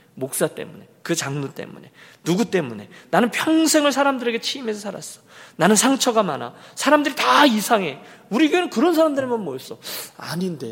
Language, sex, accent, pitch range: Korean, male, native, 135-210 Hz